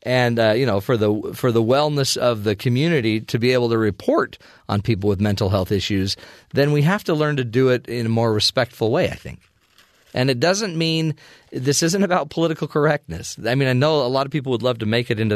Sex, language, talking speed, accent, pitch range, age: male, English, 240 wpm, American, 105-150 Hz, 40-59